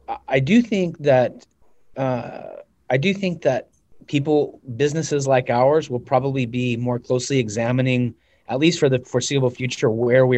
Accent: American